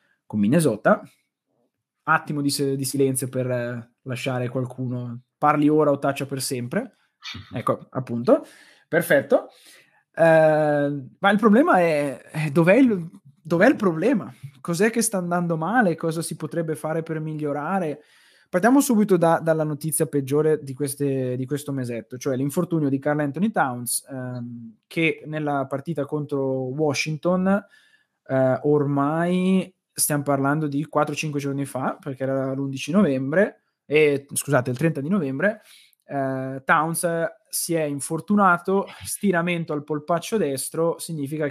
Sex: male